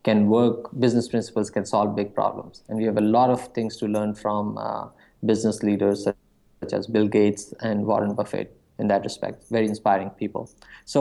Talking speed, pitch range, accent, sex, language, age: 190 wpm, 105-120 Hz, Indian, male, English, 20-39